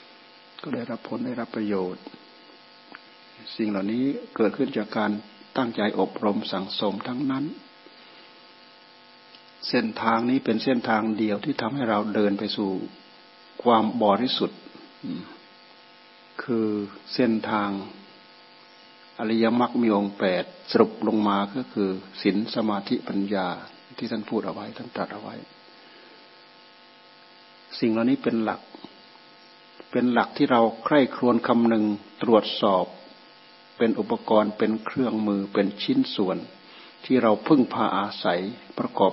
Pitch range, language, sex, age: 100-120 Hz, Thai, male, 60-79